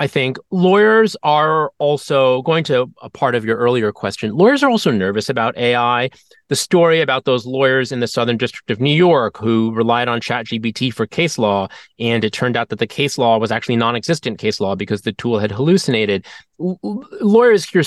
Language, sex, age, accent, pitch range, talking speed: English, male, 30-49, American, 115-170 Hz, 195 wpm